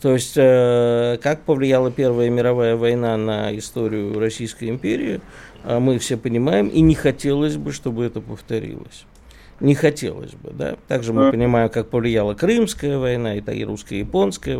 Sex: male